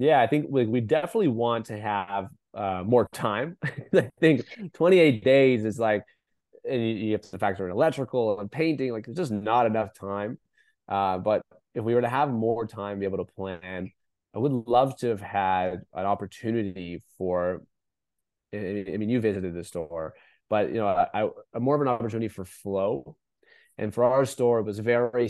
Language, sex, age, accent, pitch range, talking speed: English, male, 20-39, American, 100-120 Hz, 190 wpm